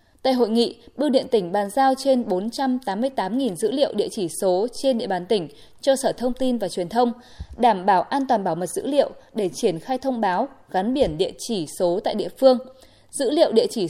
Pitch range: 200-270 Hz